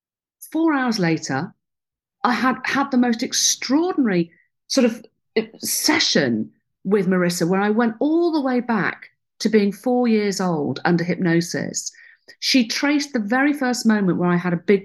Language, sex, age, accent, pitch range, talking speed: English, female, 50-69, British, 180-250 Hz, 160 wpm